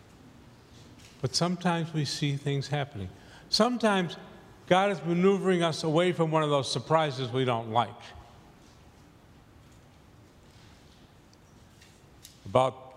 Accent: American